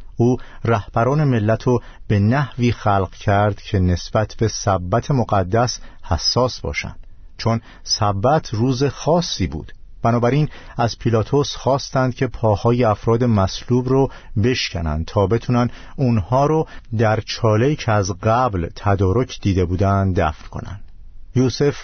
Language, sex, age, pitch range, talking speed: Persian, male, 50-69, 95-120 Hz, 125 wpm